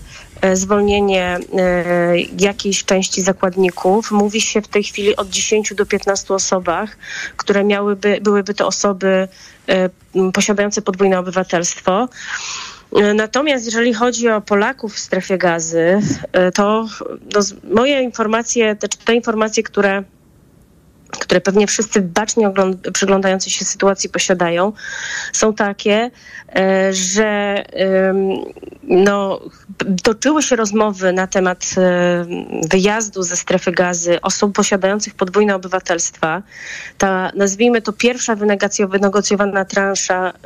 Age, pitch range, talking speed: 30-49, 185-210 Hz, 100 wpm